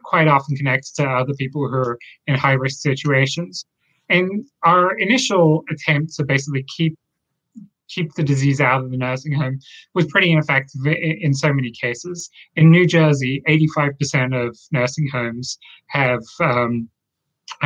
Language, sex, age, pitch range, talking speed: English, male, 30-49, 130-155 Hz, 155 wpm